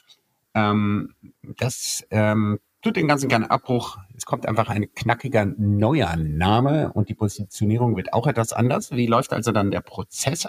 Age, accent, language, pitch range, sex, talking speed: 50-69, German, German, 100-120 Hz, male, 160 wpm